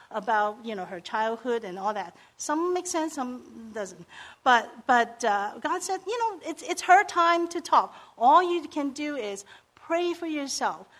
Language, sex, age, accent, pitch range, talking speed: English, female, 50-69, American, 215-315 Hz, 185 wpm